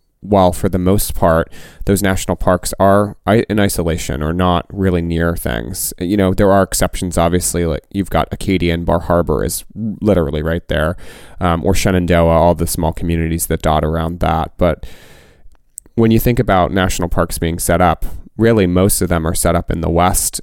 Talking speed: 190 wpm